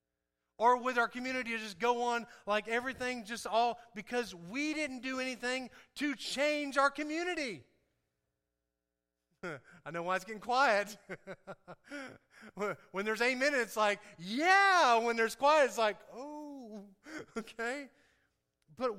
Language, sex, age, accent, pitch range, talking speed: English, male, 30-49, American, 155-255 Hz, 130 wpm